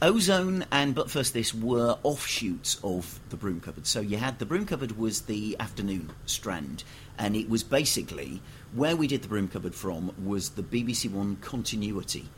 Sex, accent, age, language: male, British, 40-59, English